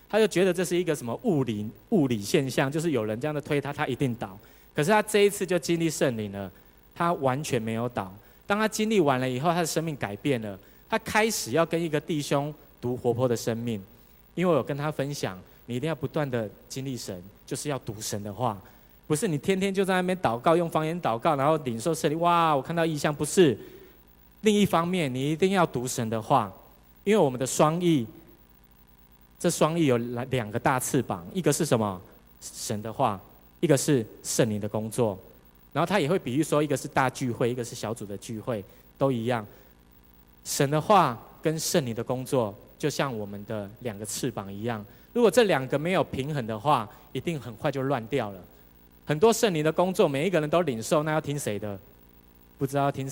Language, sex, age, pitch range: Chinese, male, 20-39, 110-160 Hz